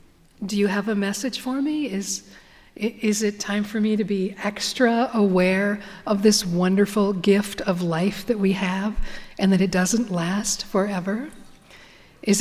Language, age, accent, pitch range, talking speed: English, 50-69, American, 185-220 Hz, 160 wpm